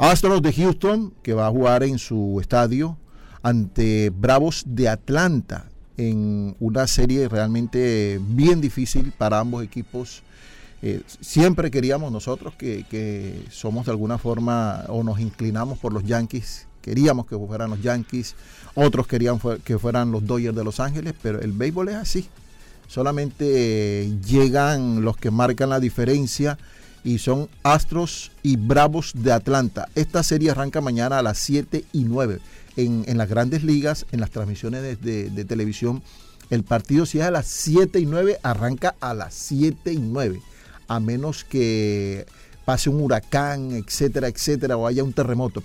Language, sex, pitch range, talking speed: Spanish, male, 115-145 Hz, 160 wpm